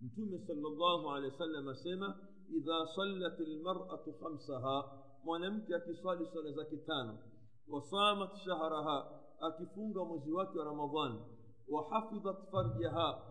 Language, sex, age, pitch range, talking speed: Swahili, male, 50-69, 160-195 Hz, 115 wpm